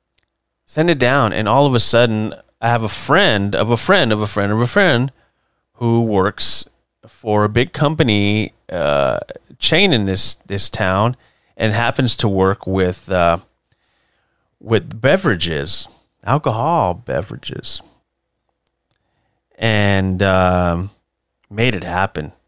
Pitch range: 95-120 Hz